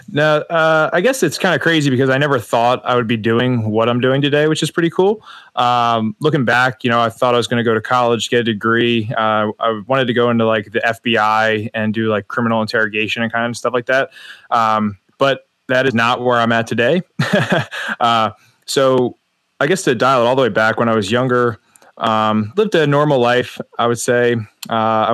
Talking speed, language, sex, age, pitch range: 225 wpm, English, male, 20-39, 110-130 Hz